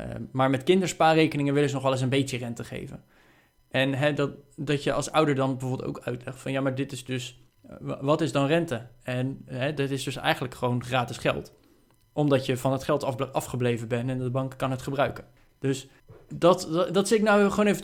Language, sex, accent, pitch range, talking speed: Dutch, male, Dutch, 125-145 Hz, 220 wpm